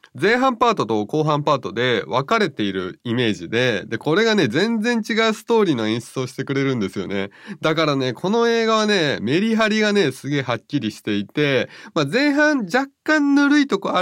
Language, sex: Japanese, male